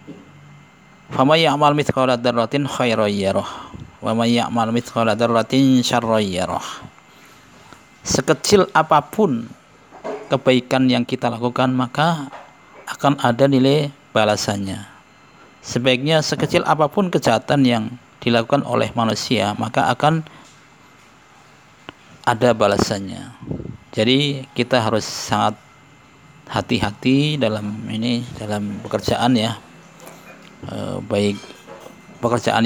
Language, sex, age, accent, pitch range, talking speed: English, male, 40-59, Indonesian, 115-140 Hz, 65 wpm